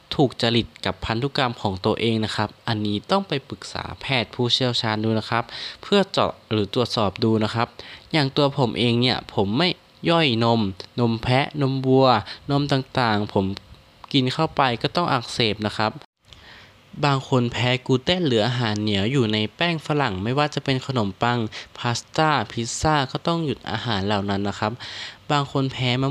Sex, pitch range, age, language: male, 110-140 Hz, 20-39, Thai